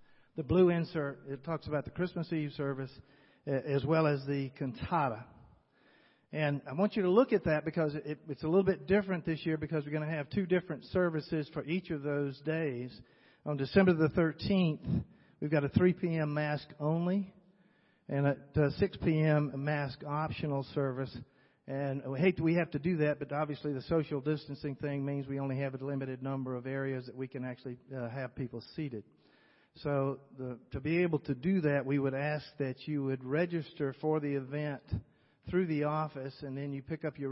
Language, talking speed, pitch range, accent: English, 195 wpm, 130-155 Hz, American